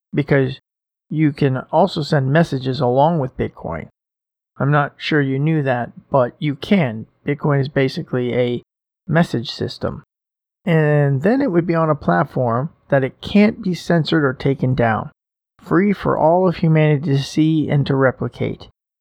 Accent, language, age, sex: American, English, 40-59, male